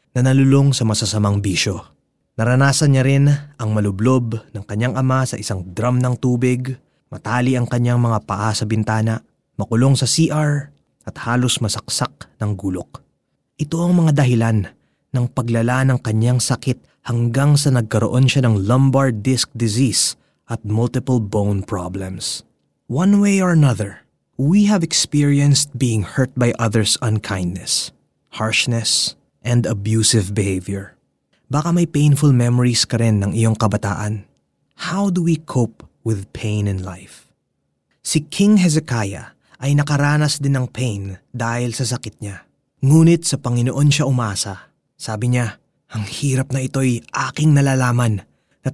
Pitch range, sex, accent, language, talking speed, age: 110-145 Hz, male, native, Filipino, 140 wpm, 20-39